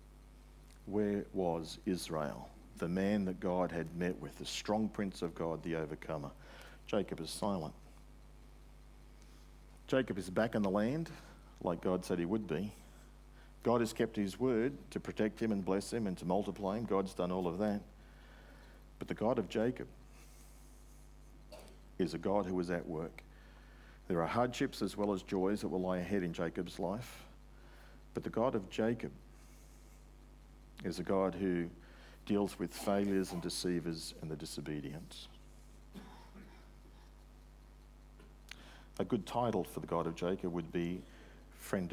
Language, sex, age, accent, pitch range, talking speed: English, male, 50-69, Australian, 85-105 Hz, 150 wpm